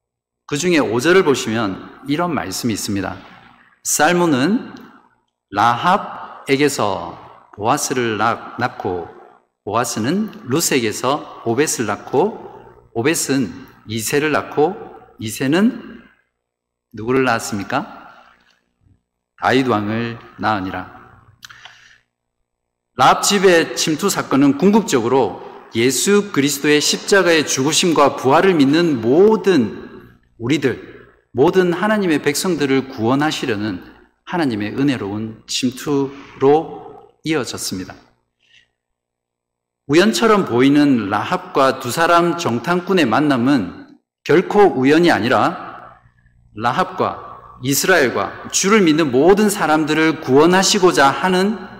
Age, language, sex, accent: 50-69, Korean, male, native